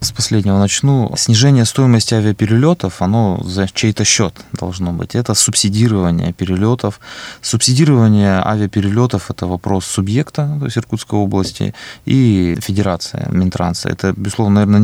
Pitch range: 95-120 Hz